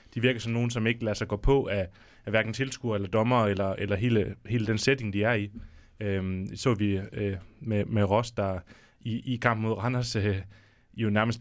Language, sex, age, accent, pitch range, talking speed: Danish, male, 30-49, native, 100-120 Hz, 225 wpm